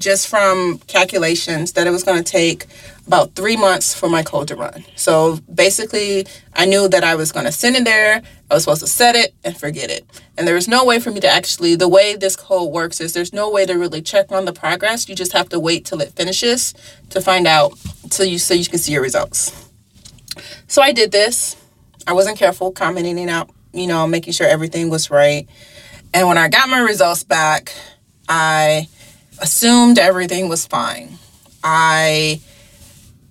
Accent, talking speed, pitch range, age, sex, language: American, 200 wpm, 165-215 Hz, 30-49, female, English